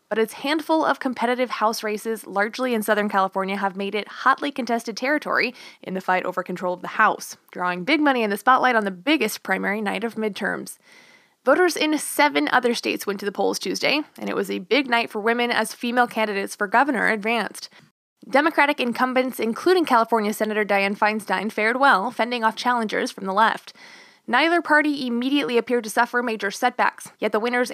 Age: 20-39